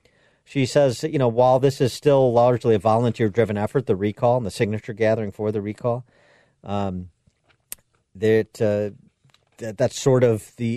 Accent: American